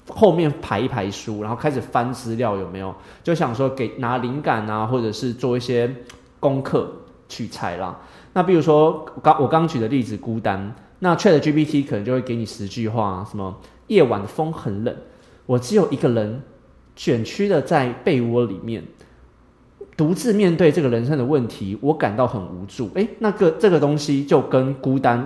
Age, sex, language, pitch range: 20-39, male, Chinese, 110-155 Hz